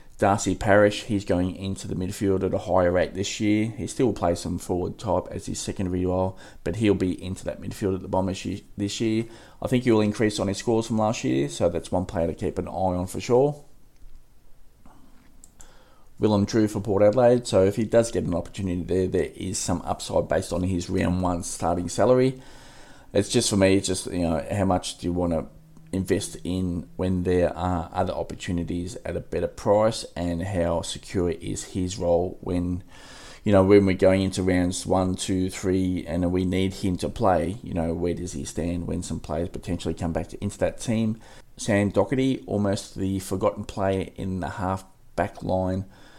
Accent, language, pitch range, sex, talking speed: Australian, English, 90-105 Hz, male, 200 wpm